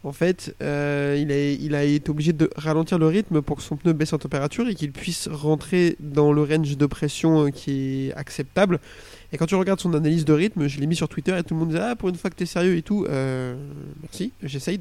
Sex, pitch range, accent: male, 150-190 Hz, French